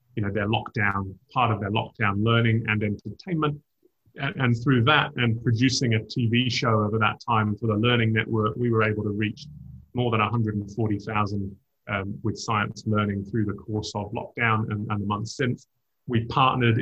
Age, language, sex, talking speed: 30-49, English, male, 180 wpm